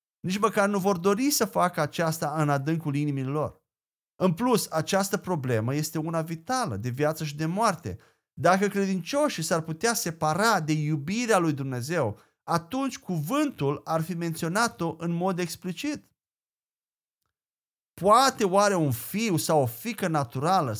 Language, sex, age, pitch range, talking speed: Romanian, male, 30-49, 150-210 Hz, 140 wpm